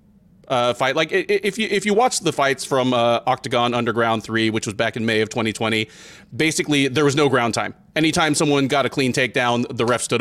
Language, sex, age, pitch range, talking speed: English, male, 30-49, 120-175 Hz, 215 wpm